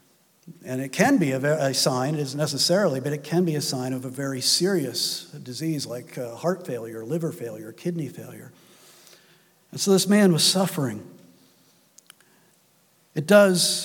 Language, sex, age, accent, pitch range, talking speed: English, male, 50-69, American, 145-180 Hz, 150 wpm